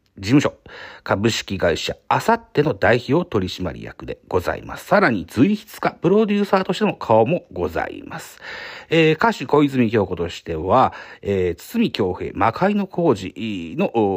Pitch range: 125-190 Hz